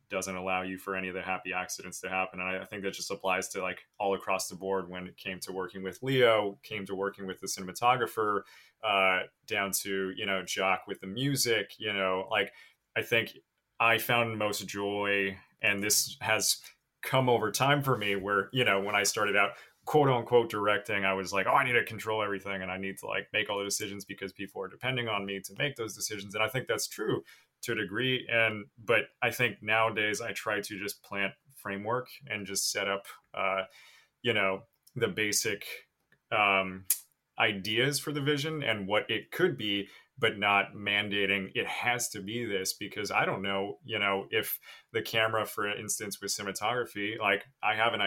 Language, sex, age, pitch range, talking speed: English, male, 30-49, 95-115 Hz, 205 wpm